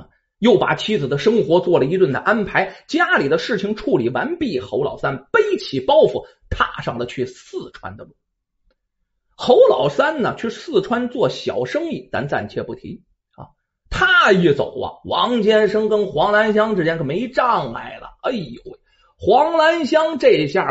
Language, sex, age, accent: Chinese, male, 30-49, native